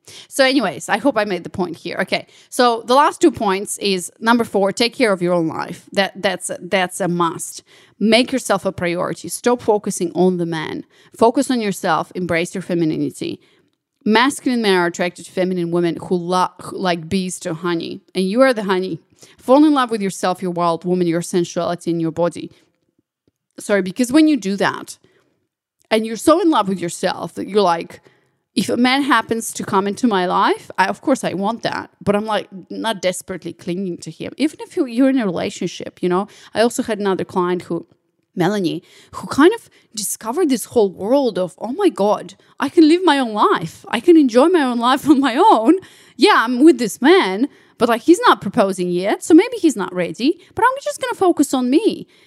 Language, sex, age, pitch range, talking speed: English, female, 30-49, 180-275 Hz, 205 wpm